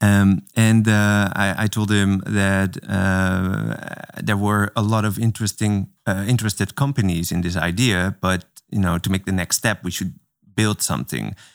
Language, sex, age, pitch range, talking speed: Dutch, male, 20-39, 85-105 Hz, 170 wpm